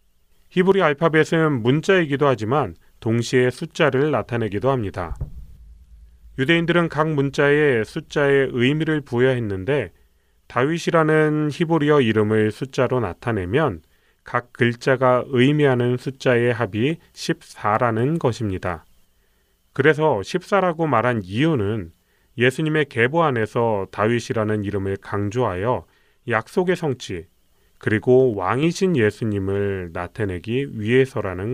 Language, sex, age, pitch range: Korean, male, 30-49, 105-150 Hz